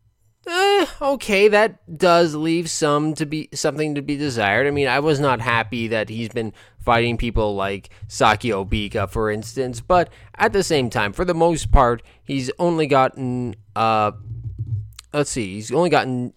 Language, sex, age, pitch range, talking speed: English, male, 20-39, 105-150 Hz, 170 wpm